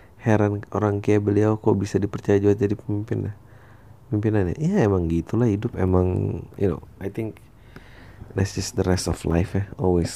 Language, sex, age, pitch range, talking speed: Indonesian, male, 30-49, 90-110 Hz, 165 wpm